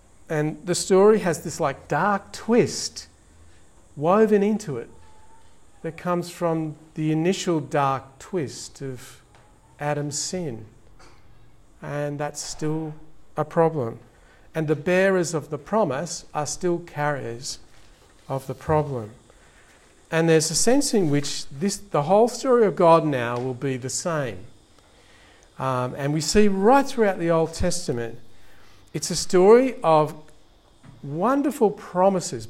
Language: English